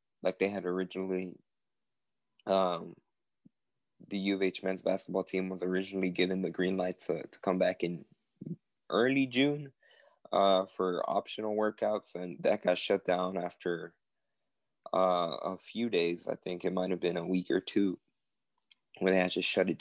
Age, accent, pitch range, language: 20-39, American, 90-95 Hz, English